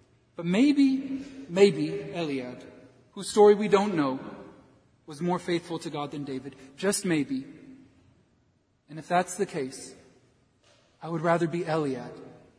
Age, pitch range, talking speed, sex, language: 40-59, 125-155 Hz, 135 wpm, male, English